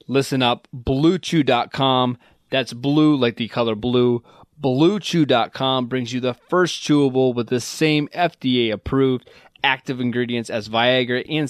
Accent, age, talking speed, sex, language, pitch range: American, 20-39, 125 wpm, male, English, 120-145 Hz